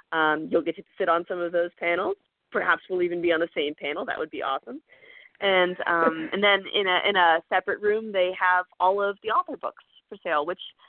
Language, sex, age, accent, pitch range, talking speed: English, female, 20-39, American, 170-215 Hz, 230 wpm